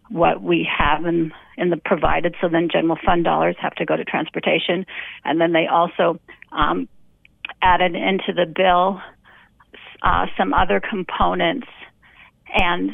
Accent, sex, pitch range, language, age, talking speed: American, female, 165-190 Hz, English, 40-59, 145 wpm